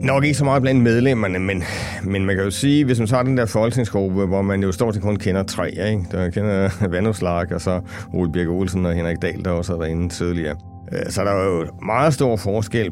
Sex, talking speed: male, 240 wpm